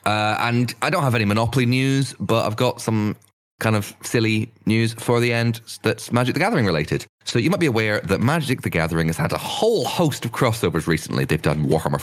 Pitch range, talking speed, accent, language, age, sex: 85-120 Hz, 220 wpm, British, English, 30-49, male